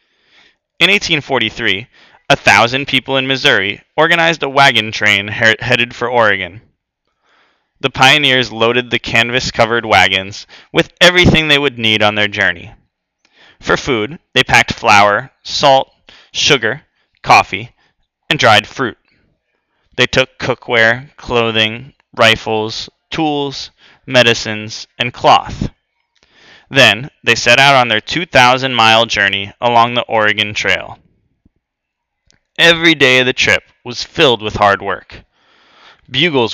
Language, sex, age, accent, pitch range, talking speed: English, male, 20-39, American, 110-135 Hz, 115 wpm